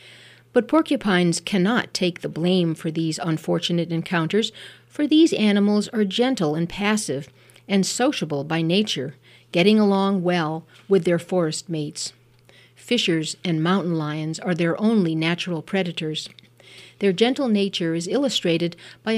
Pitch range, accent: 155-205 Hz, American